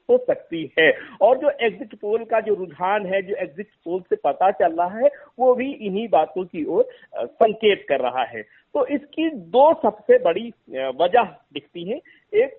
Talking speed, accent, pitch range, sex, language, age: 180 wpm, native, 180-280 Hz, male, Hindi, 50-69